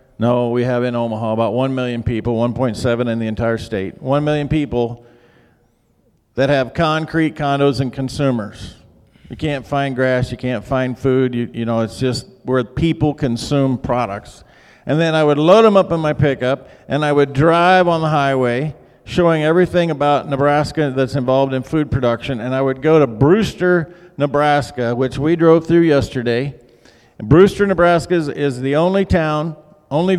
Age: 50-69